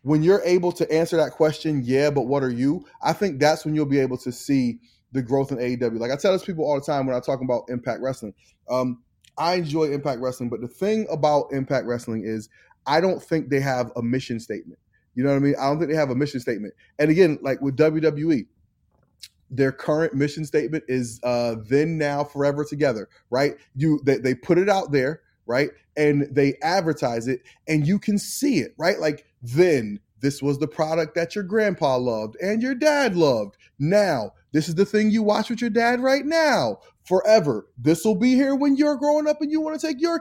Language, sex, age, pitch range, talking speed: English, male, 20-39, 140-225 Hz, 220 wpm